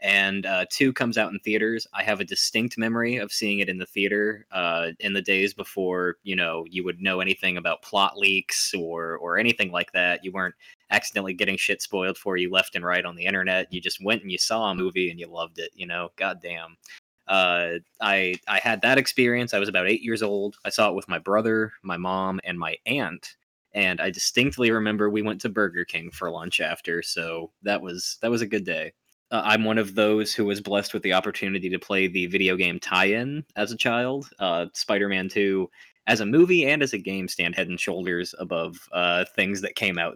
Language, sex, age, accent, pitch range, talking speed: English, male, 20-39, American, 90-105 Hz, 220 wpm